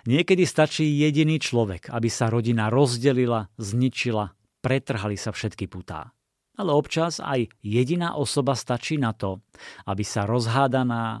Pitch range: 105-130 Hz